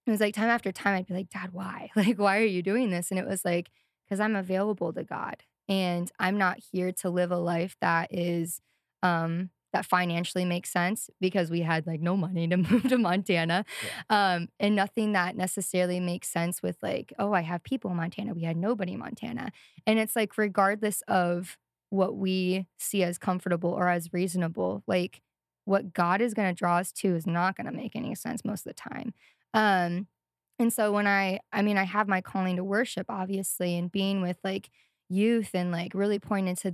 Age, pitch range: 20-39, 175-205 Hz